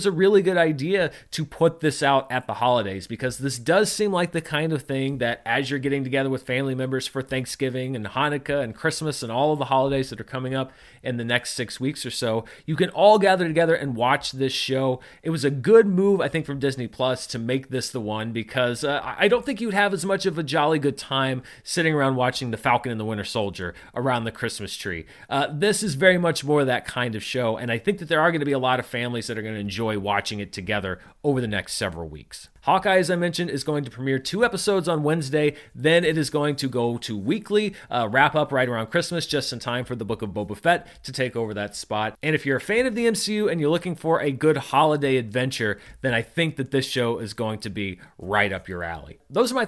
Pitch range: 120-165 Hz